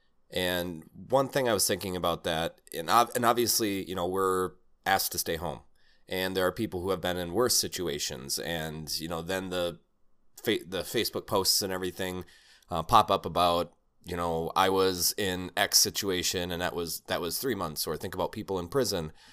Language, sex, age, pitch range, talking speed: English, male, 20-39, 90-105 Hz, 190 wpm